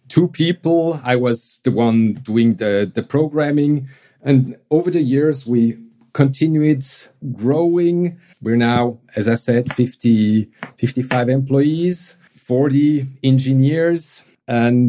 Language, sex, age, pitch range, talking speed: English, male, 50-69, 115-145 Hz, 115 wpm